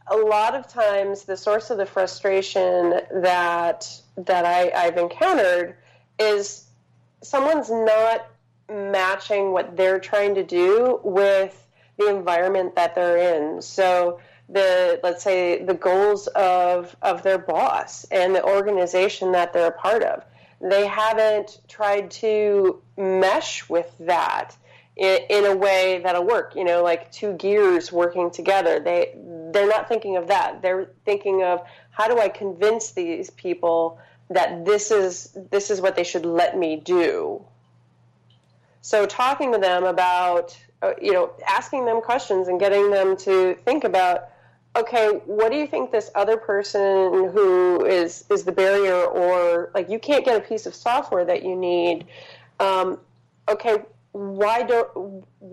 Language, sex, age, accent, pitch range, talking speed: English, female, 30-49, American, 180-210 Hz, 150 wpm